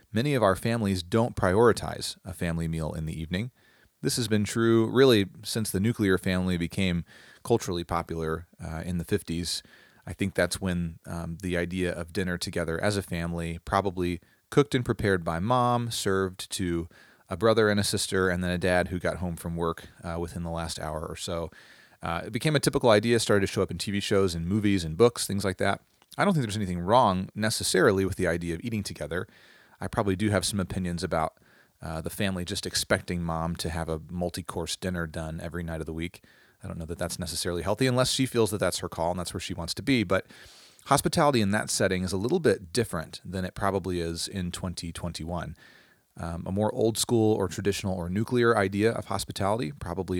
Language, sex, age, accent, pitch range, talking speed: English, male, 30-49, American, 85-105 Hz, 210 wpm